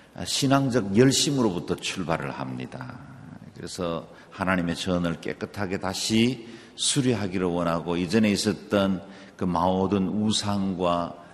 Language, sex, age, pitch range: Korean, male, 50-69, 80-110 Hz